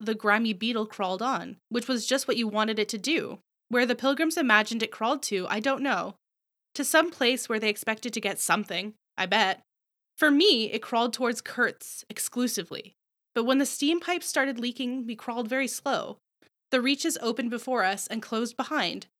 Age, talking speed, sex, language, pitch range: 20-39, 190 wpm, female, English, 210-260 Hz